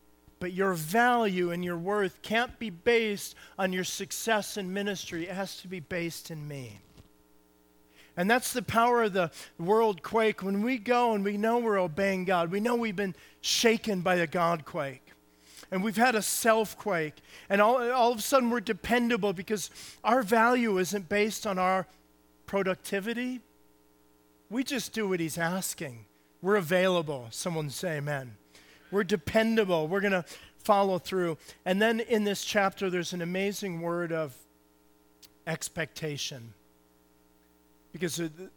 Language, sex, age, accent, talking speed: English, male, 40-59, American, 155 wpm